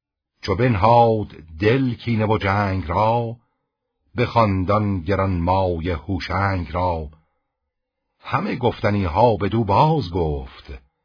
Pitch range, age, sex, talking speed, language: 85-110 Hz, 60-79, male, 105 wpm, Persian